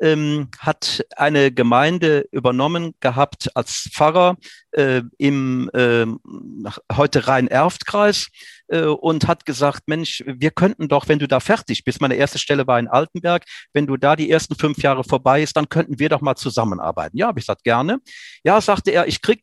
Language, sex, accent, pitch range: German, male, German, 135-175 Hz